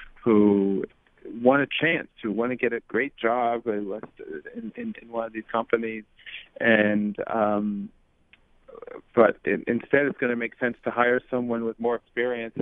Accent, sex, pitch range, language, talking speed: American, male, 105-125 Hz, English, 150 wpm